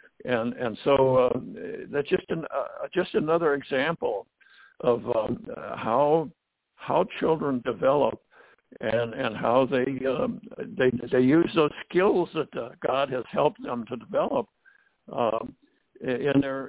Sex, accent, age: male, American, 60-79